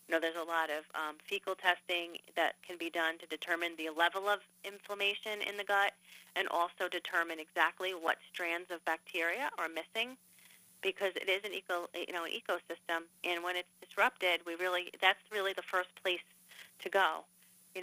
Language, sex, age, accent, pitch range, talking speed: English, female, 30-49, American, 165-190 Hz, 180 wpm